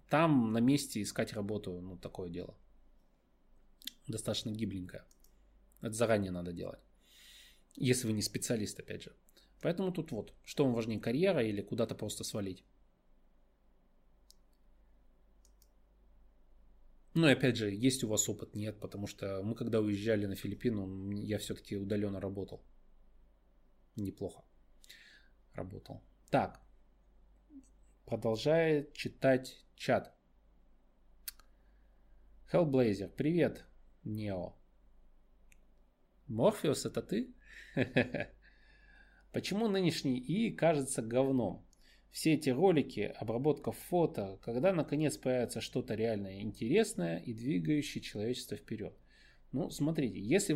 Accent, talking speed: native, 100 wpm